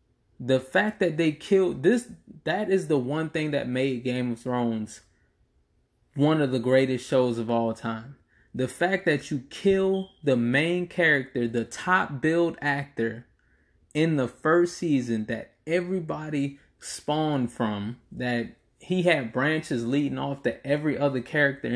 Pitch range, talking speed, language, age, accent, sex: 120-160 Hz, 150 wpm, English, 20-39, American, male